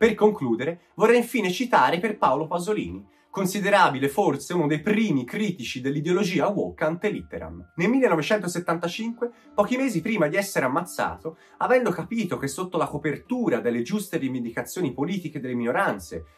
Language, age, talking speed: Italian, 30-49, 130 wpm